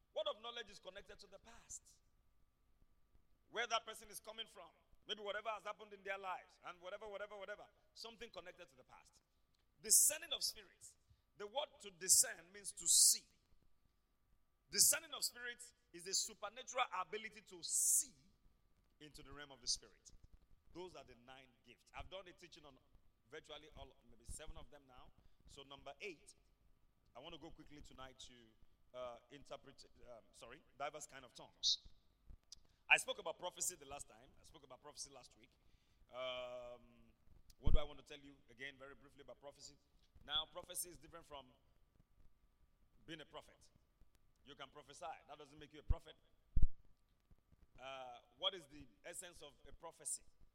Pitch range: 125-185 Hz